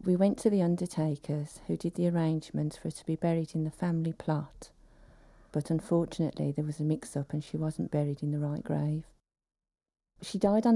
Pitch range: 150-175 Hz